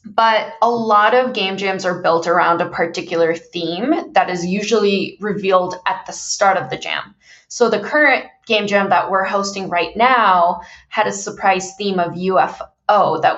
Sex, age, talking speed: female, 20-39, 175 wpm